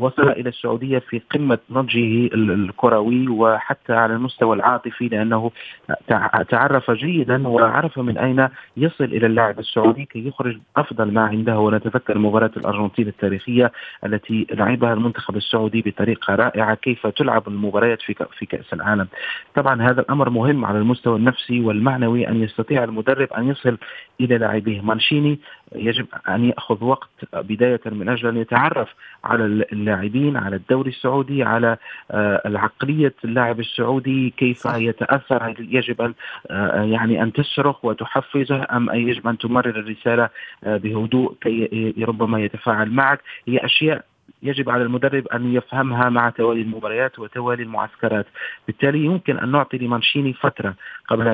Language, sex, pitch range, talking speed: Arabic, male, 110-130 Hz, 135 wpm